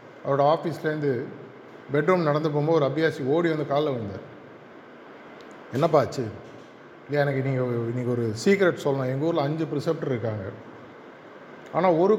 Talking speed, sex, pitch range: 130 wpm, male, 135-175 Hz